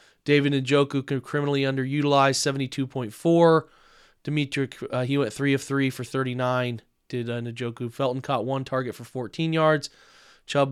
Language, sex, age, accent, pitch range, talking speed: English, male, 20-39, American, 125-145 Hz, 140 wpm